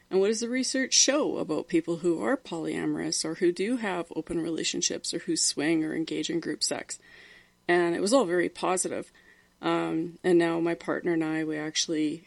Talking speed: 195 wpm